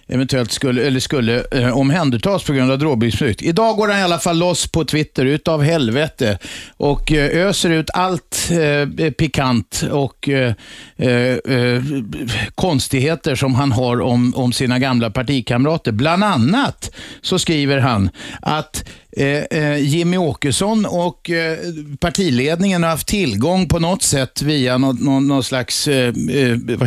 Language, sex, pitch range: Swedish, male, 125-165 Hz